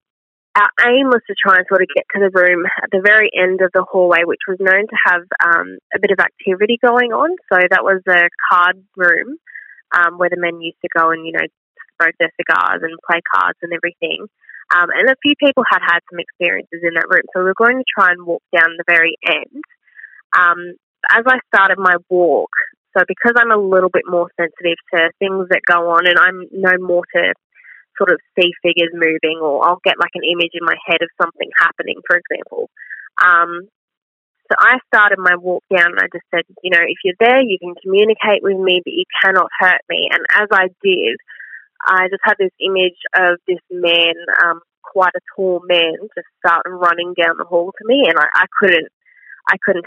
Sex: female